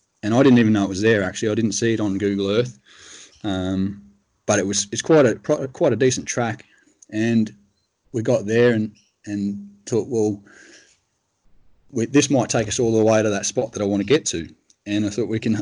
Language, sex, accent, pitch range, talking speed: English, male, Australian, 100-120 Hz, 220 wpm